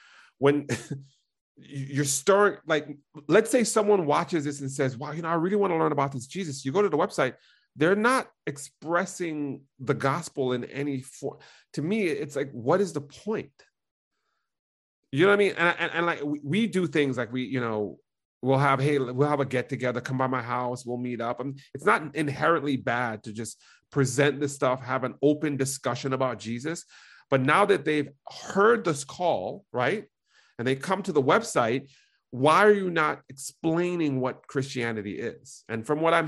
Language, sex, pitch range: English, male, 125-155 Hz